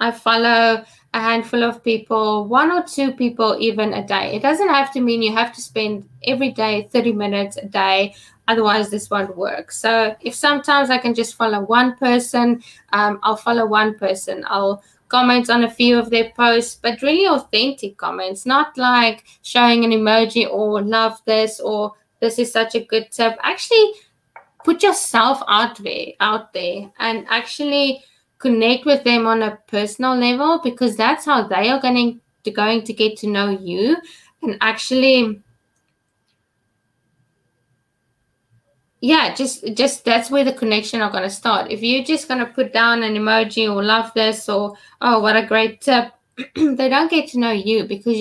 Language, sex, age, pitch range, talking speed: English, female, 20-39, 210-250 Hz, 175 wpm